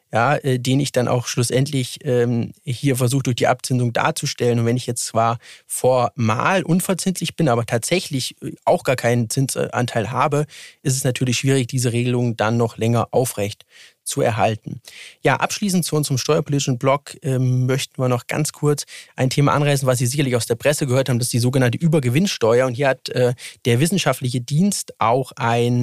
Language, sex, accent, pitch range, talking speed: German, male, German, 125-150 Hz, 180 wpm